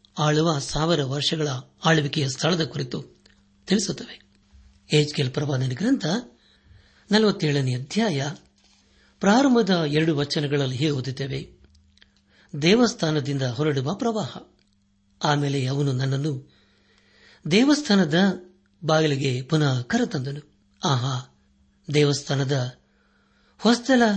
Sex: male